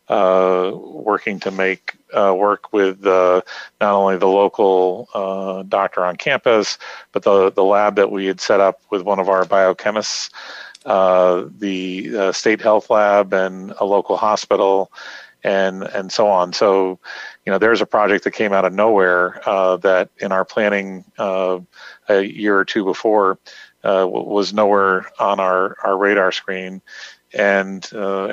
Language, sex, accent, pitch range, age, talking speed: English, male, American, 95-105 Hz, 40-59, 160 wpm